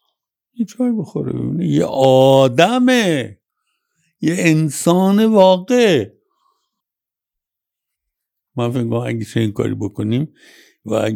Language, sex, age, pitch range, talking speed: Persian, male, 60-79, 100-155 Hz, 85 wpm